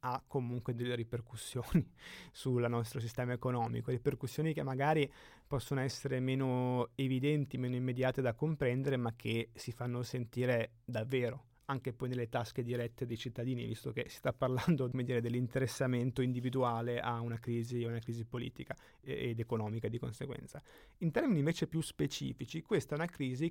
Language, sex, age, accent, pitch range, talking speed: Italian, male, 30-49, native, 125-155 Hz, 155 wpm